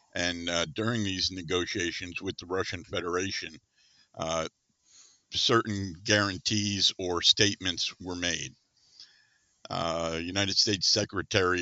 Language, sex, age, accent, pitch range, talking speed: English, male, 50-69, American, 90-110 Hz, 105 wpm